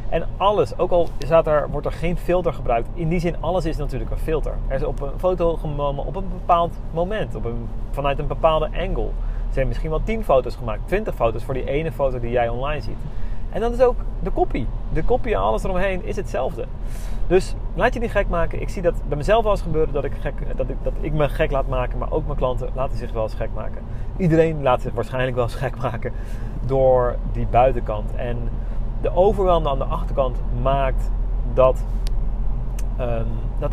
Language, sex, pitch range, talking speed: Dutch, male, 115-155 Hz, 210 wpm